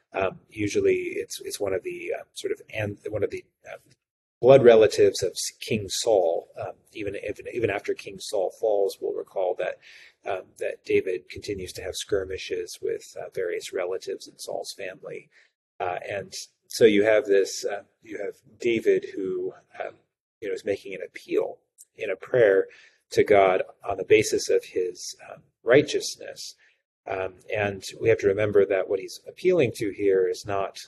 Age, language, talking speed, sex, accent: 30-49, English, 170 wpm, male, American